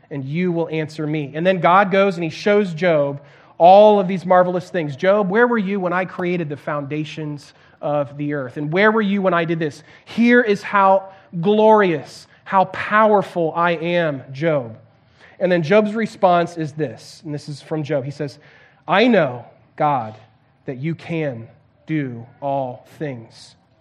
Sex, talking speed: male, 175 wpm